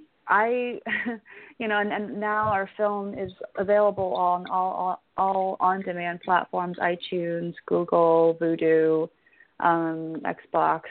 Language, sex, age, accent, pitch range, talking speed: English, female, 30-49, American, 180-215 Hz, 115 wpm